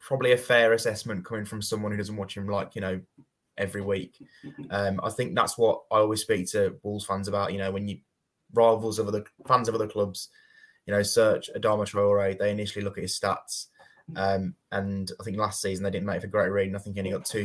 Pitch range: 100-105 Hz